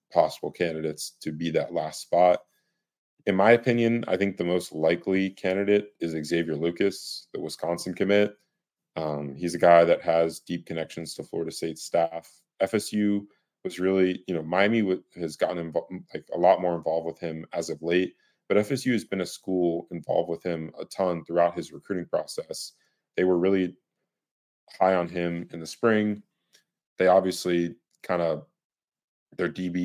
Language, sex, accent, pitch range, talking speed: English, male, American, 80-95 Hz, 165 wpm